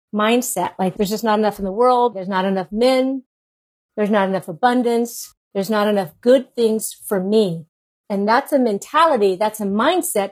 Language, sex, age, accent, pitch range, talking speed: English, female, 50-69, American, 205-250 Hz, 180 wpm